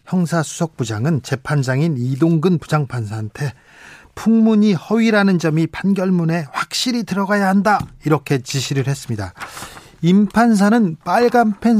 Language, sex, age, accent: Korean, male, 40-59, native